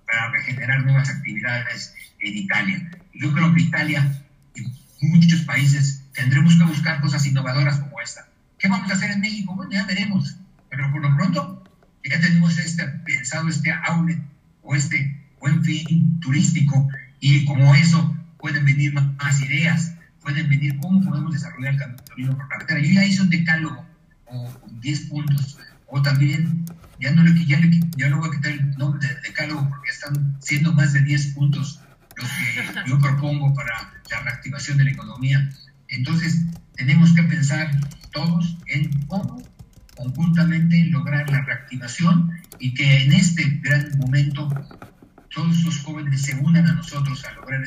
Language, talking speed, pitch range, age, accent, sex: Spanish, 155 wpm, 140-165 Hz, 50-69, Mexican, male